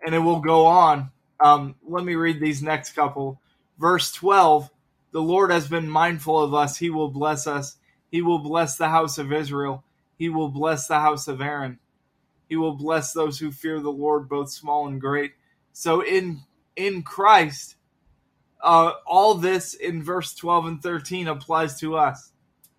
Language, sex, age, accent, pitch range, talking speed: English, male, 20-39, American, 145-165 Hz, 175 wpm